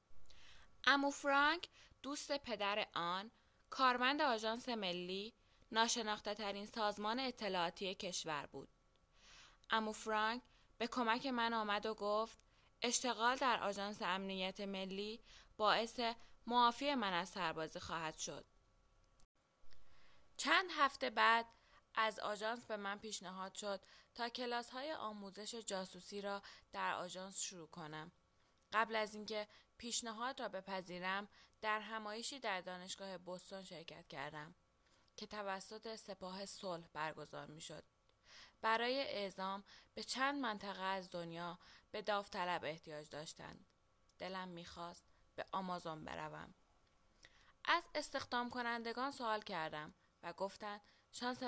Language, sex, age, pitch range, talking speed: Persian, female, 10-29, 185-230 Hz, 115 wpm